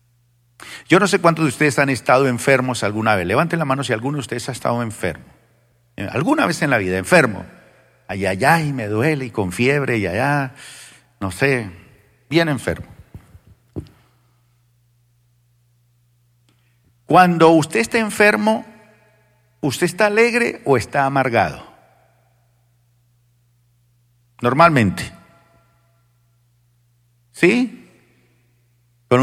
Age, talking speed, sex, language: 50-69, 110 wpm, male, Spanish